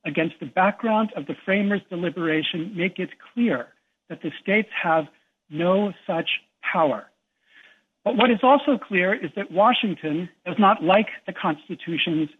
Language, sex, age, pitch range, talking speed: English, male, 60-79, 170-215 Hz, 145 wpm